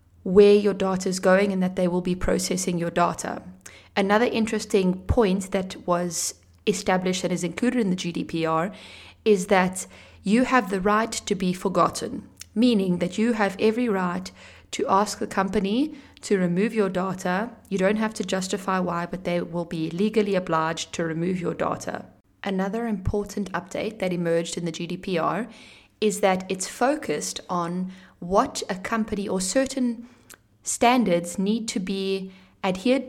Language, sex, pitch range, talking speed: Italian, female, 175-215 Hz, 160 wpm